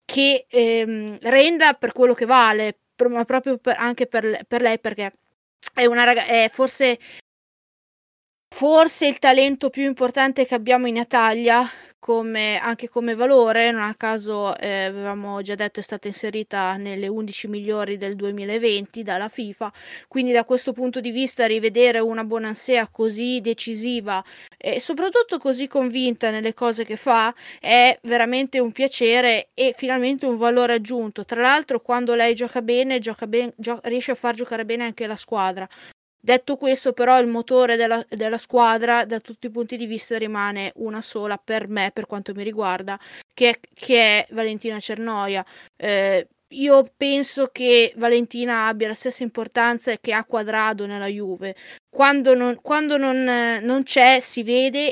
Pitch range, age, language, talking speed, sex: 220-255 Hz, 20-39, Italian, 160 wpm, female